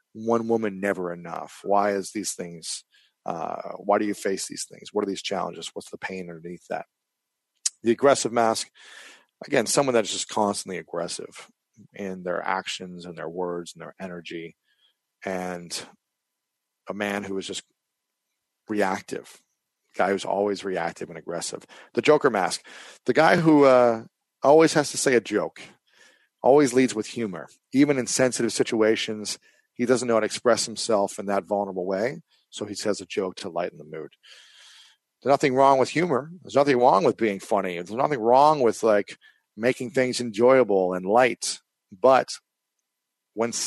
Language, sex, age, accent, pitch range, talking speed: English, male, 40-59, American, 95-120 Hz, 165 wpm